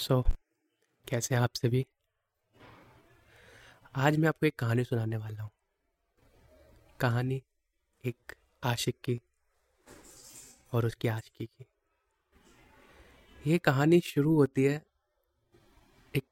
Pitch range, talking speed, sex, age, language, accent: 110-130 Hz, 105 wpm, male, 20-39, Hindi, native